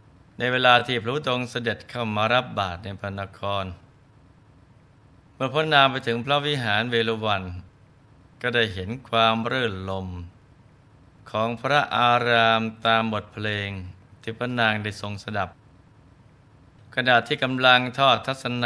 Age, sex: 20-39, male